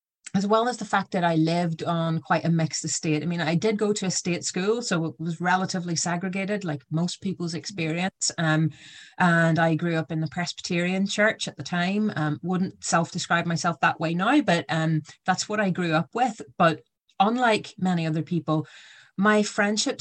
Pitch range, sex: 160-190 Hz, female